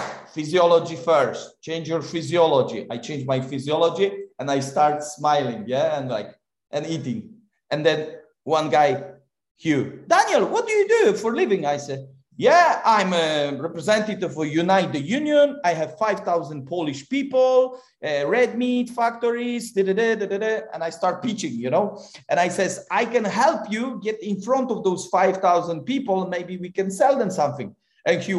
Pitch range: 165-255 Hz